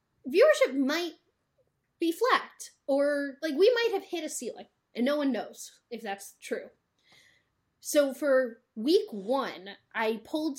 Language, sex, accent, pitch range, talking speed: English, female, American, 220-295 Hz, 140 wpm